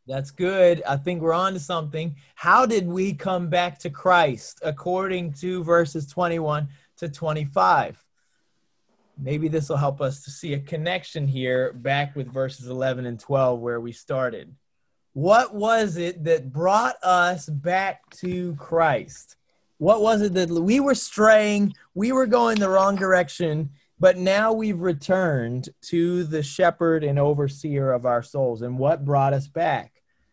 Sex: male